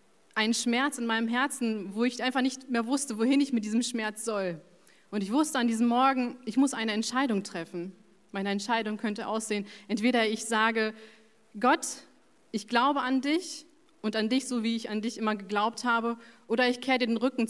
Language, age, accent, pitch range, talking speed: German, 30-49, German, 205-235 Hz, 195 wpm